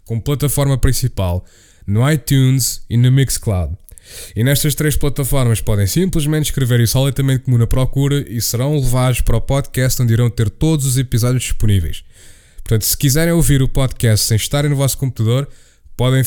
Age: 20-39